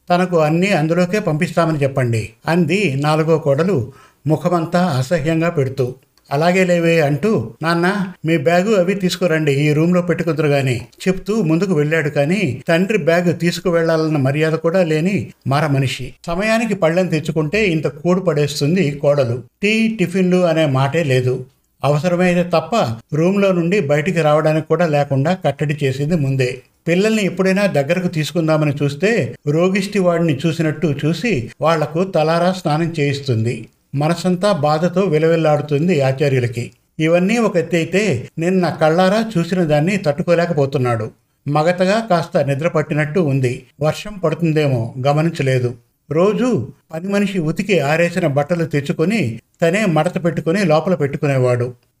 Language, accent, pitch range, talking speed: Telugu, native, 145-180 Hz, 115 wpm